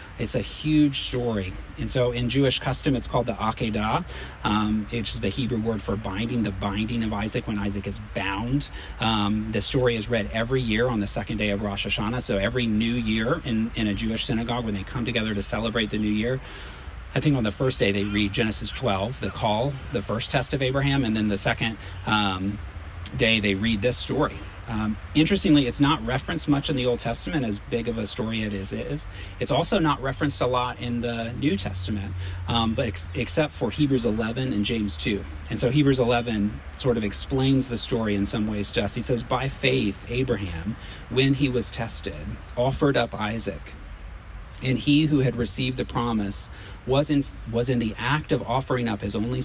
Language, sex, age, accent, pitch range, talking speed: English, male, 40-59, American, 100-125 Hz, 205 wpm